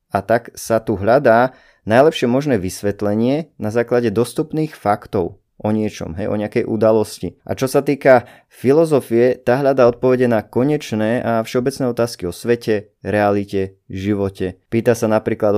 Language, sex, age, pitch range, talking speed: Slovak, male, 20-39, 105-130 Hz, 145 wpm